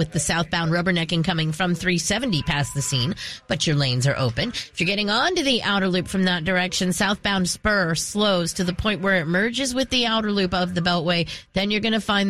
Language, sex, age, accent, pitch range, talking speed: English, female, 30-49, American, 165-205 Hz, 230 wpm